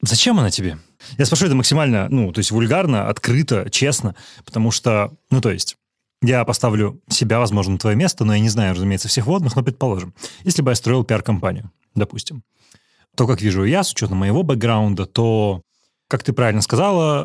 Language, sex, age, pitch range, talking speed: Russian, male, 30-49, 105-135 Hz, 185 wpm